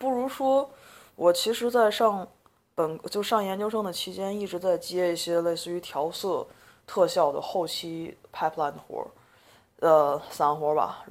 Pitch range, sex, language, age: 155-185 Hz, female, Chinese, 20-39